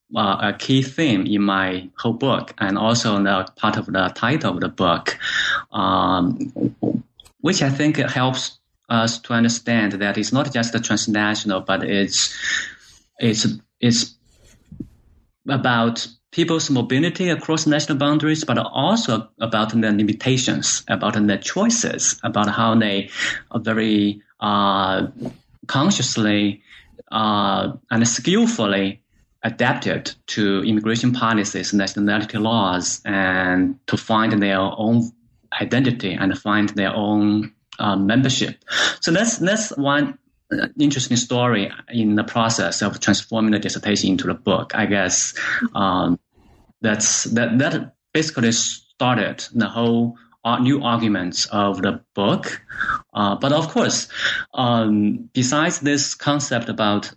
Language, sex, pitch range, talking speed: English, male, 105-125 Hz, 125 wpm